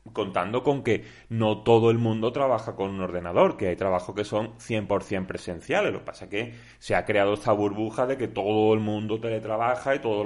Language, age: Spanish, 30-49